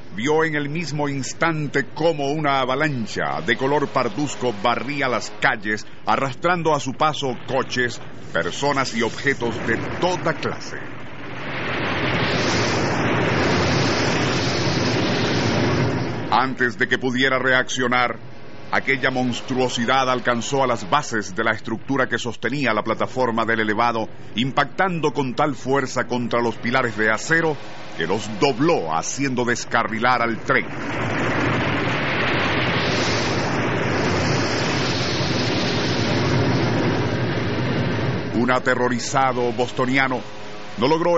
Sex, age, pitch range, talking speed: male, 50-69, 115-140 Hz, 95 wpm